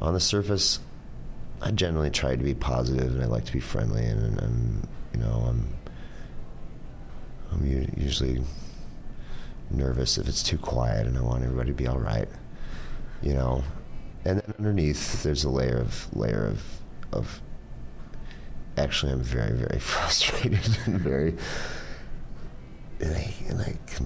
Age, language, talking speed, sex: 30-49, English, 150 wpm, male